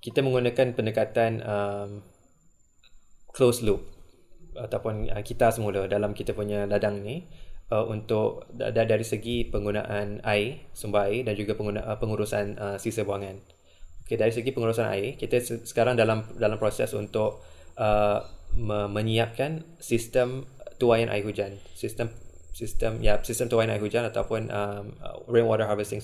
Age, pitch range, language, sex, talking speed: 20-39, 105-120 Hz, Indonesian, male, 145 wpm